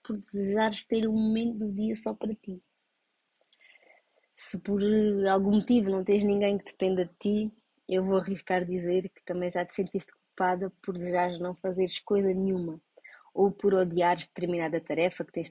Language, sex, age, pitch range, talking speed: Portuguese, female, 20-39, 180-210 Hz, 170 wpm